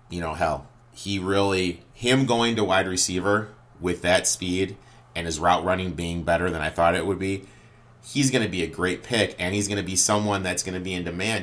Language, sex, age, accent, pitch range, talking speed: English, male, 30-49, American, 75-100 Hz, 230 wpm